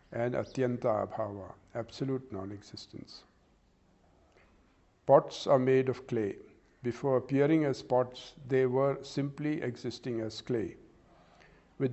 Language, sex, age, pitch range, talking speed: English, male, 50-69, 115-135 Hz, 105 wpm